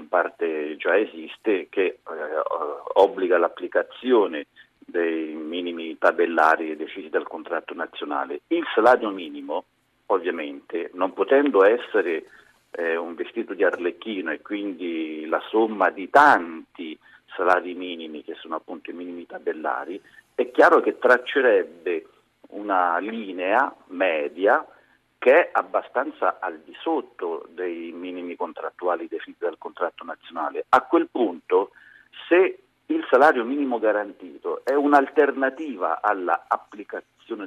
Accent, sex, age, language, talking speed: native, male, 40-59, Italian, 115 wpm